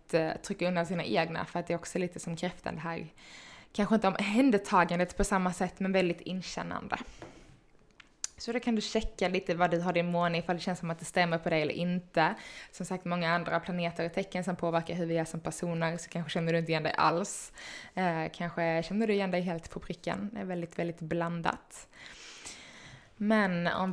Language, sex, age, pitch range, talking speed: Swedish, female, 20-39, 170-190 Hz, 205 wpm